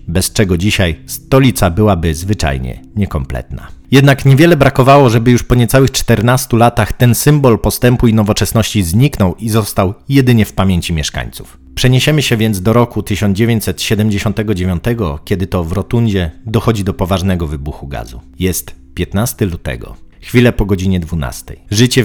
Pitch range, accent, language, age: 90-120 Hz, native, Polish, 40-59